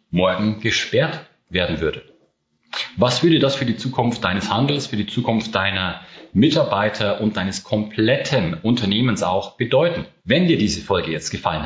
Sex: male